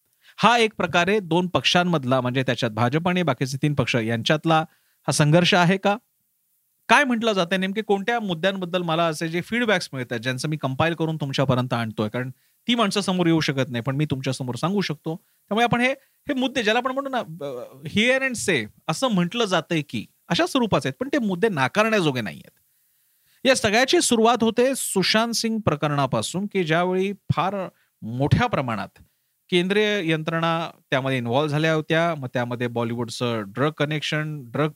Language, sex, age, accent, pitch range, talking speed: Marathi, male, 40-59, native, 140-210 Hz, 90 wpm